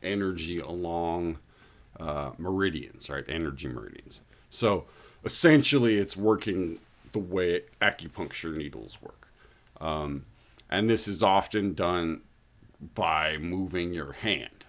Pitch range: 75-95 Hz